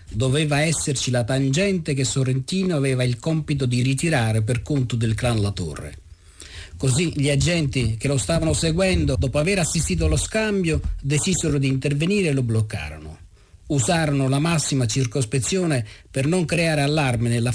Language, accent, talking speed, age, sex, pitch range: Italian, native, 150 wpm, 50-69, male, 120-165 Hz